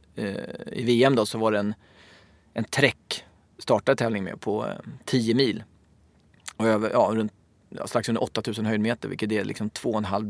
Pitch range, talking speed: 105-125 Hz, 170 wpm